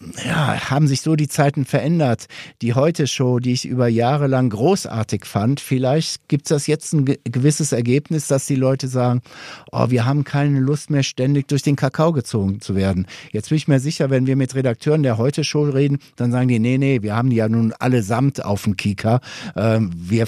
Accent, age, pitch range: German, 50-69, 120-150 Hz